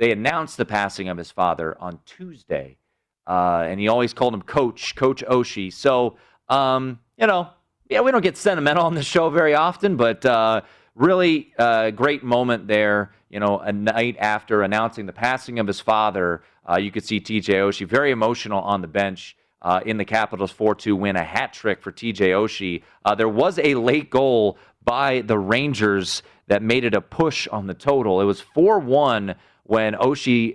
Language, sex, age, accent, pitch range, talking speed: English, male, 30-49, American, 95-130 Hz, 185 wpm